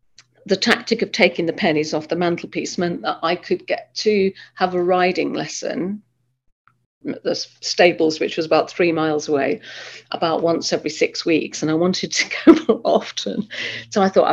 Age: 50-69